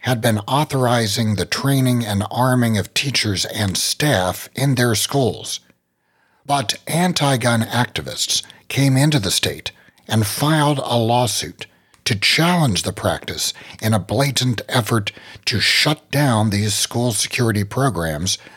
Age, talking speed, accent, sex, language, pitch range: 60-79, 130 wpm, American, male, English, 105-135 Hz